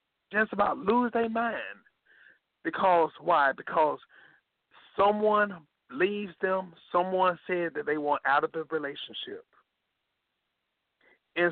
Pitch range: 170-210 Hz